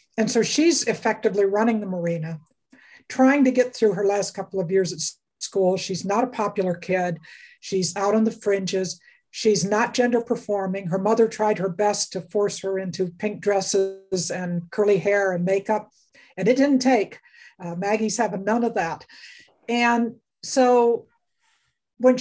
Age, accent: 60-79, American